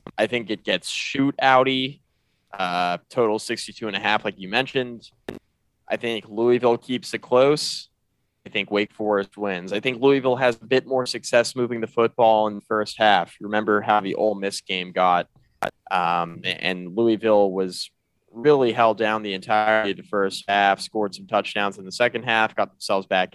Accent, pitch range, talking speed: American, 100-125 Hz, 175 wpm